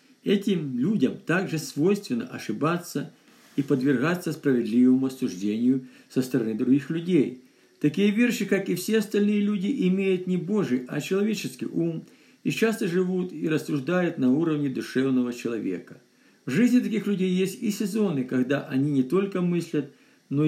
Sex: male